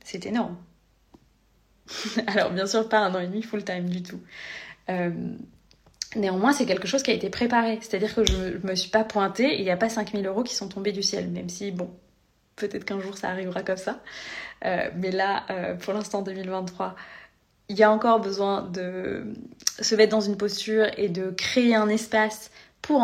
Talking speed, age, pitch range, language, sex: 200 wpm, 20-39, 195-225 Hz, French, female